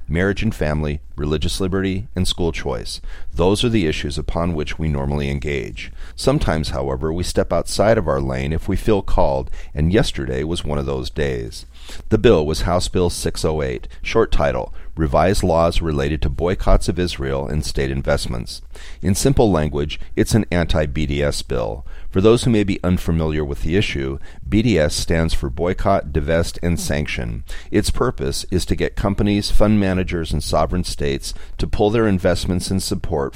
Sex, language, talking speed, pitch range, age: male, English, 170 wpm, 70-90 Hz, 40-59